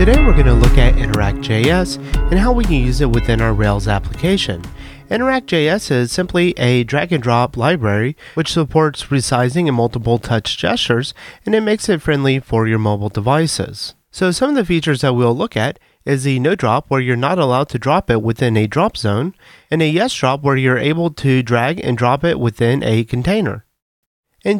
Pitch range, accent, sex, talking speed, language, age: 120-175 Hz, American, male, 190 wpm, English, 30-49